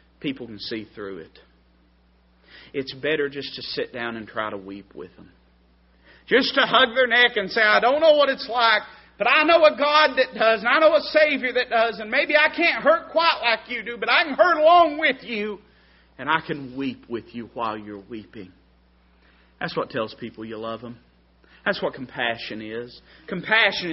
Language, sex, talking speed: English, male, 205 wpm